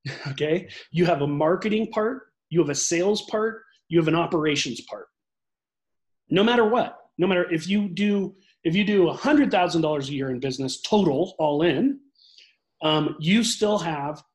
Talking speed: 165 wpm